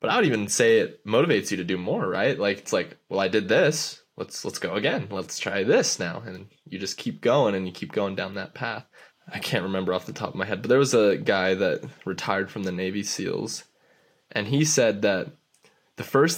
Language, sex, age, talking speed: English, male, 10-29, 240 wpm